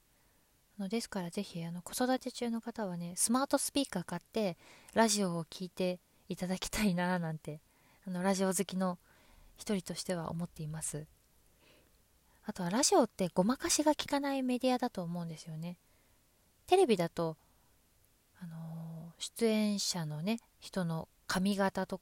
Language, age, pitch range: Japanese, 20-39, 170-235 Hz